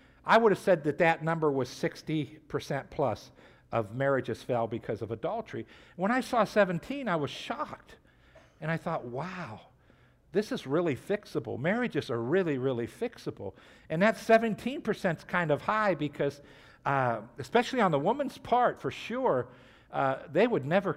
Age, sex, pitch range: 50-69, male, 115-165 Hz